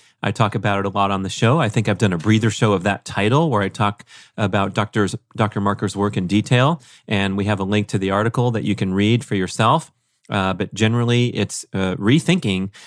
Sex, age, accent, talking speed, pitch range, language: male, 30-49, American, 225 wpm, 105-130 Hz, English